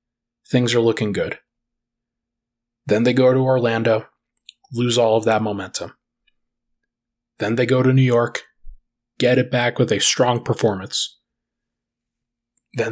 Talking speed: 130 wpm